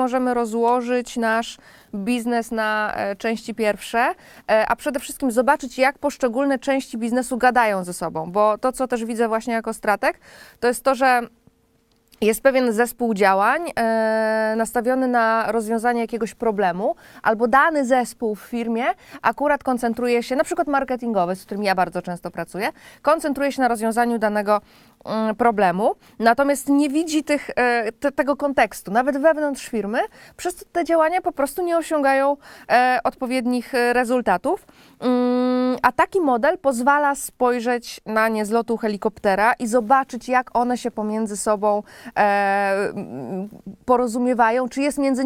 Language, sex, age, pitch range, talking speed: Polish, female, 20-39, 220-260 Hz, 140 wpm